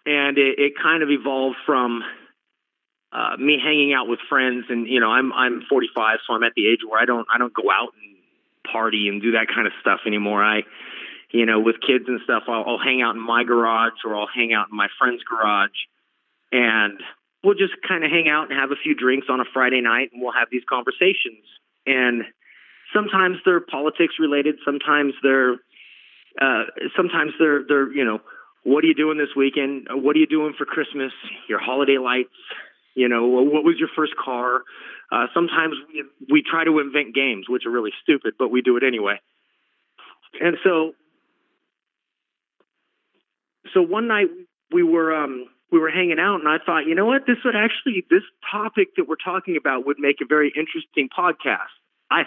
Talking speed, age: 195 wpm, 30-49